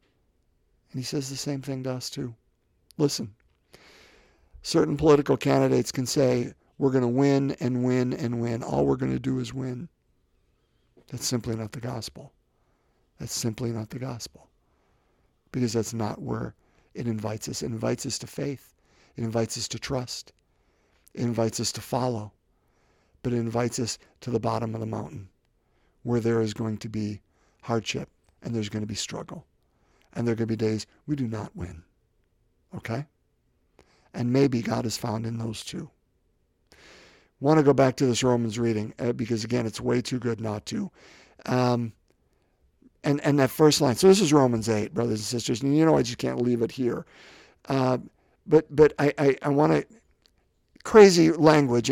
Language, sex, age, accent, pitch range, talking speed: English, male, 50-69, American, 110-140 Hz, 180 wpm